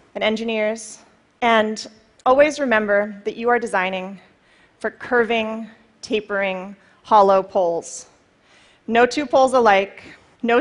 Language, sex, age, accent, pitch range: Chinese, female, 30-49, American, 205-255 Hz